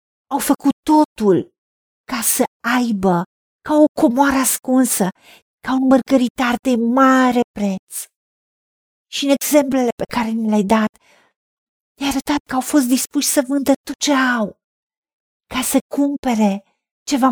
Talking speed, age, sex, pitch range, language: 140 wpm, 50-69, female, 225-285 Hz, Romanian